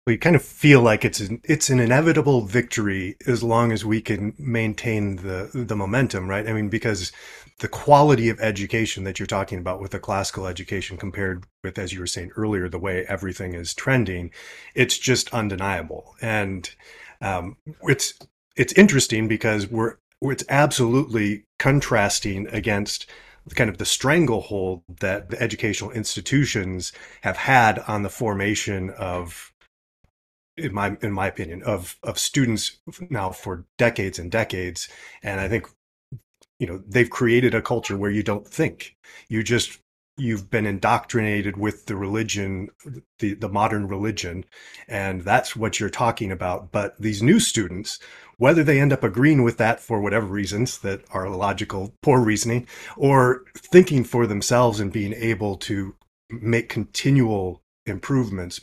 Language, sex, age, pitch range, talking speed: English, male, 30-49, 95-120 Hz, 155 wpm